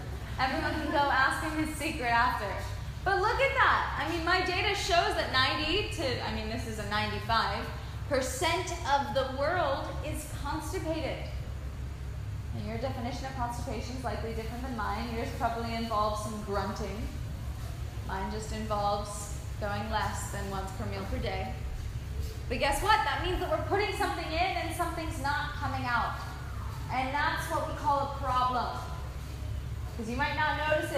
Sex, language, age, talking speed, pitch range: female, English, 20-39, 160 wpm, 280-390 Hz